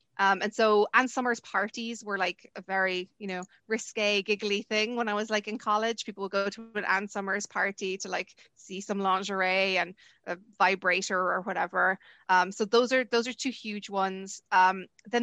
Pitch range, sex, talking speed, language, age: 195-225 Hz, female, 195 wpm, English, 20-39